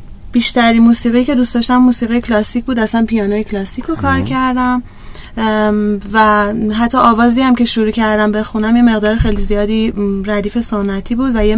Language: Persian